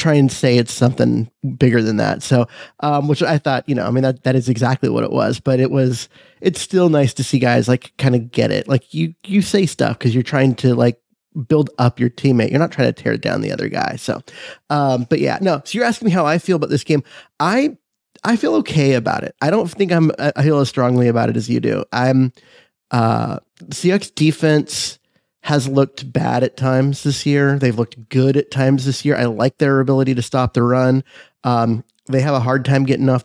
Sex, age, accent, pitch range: male, 30-49, American, 125-145 Hz